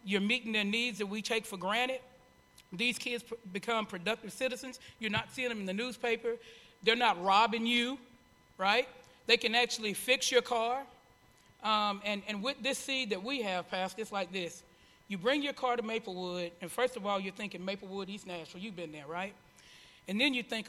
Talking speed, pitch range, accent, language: 195 wpm, 195-250 Hz, American, English